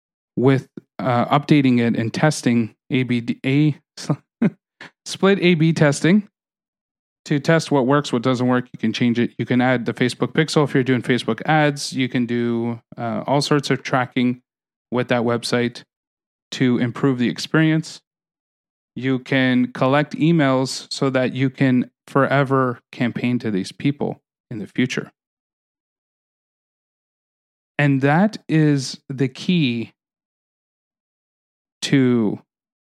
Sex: male